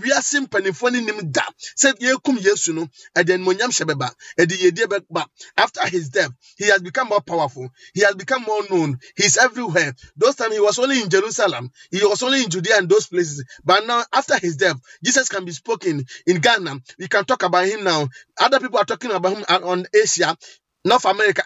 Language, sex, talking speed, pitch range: English, male, 160 wpm, 180-245 Hz